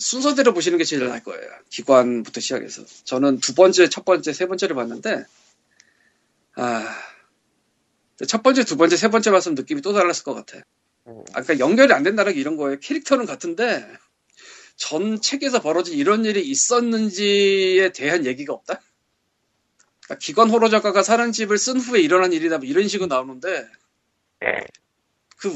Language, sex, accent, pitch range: Korean, male, native, 160-260 Hz